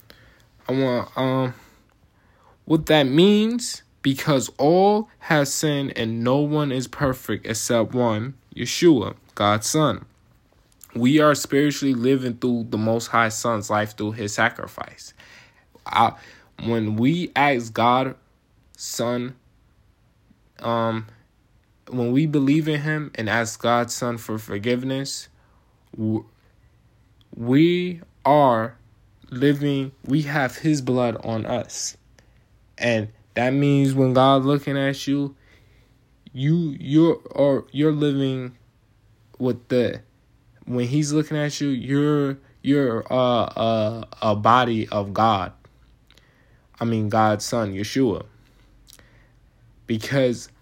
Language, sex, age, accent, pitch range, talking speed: English, male, 20-39, American, 110-140 Hz, 115 wpm